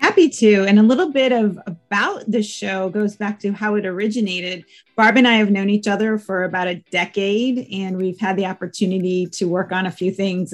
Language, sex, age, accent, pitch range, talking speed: English, female, 40-59, American, 190-225 Hz, 215 wpm